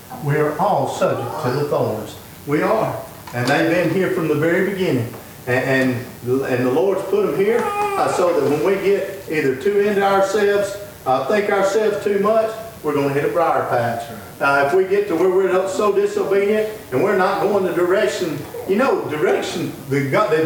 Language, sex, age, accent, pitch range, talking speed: English, male, 50-69, American, 135-190 Hz, 195 wpm